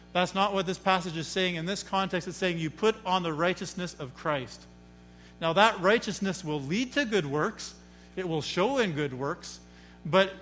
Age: 50-69